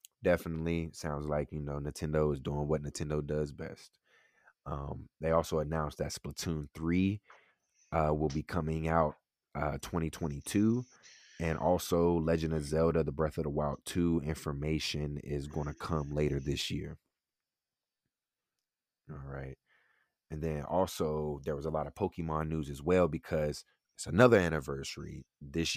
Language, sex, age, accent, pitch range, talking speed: English, male, 30-49, American, 75-85 Hz, 150 wpm